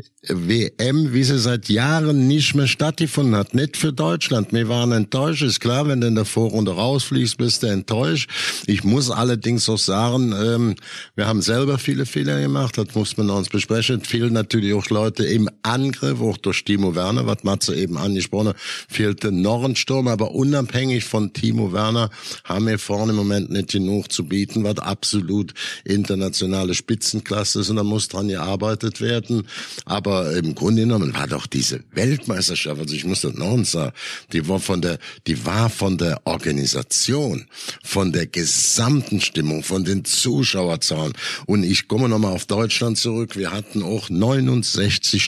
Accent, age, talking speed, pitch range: German, 60-79, 170 wpm, 95-120 Hz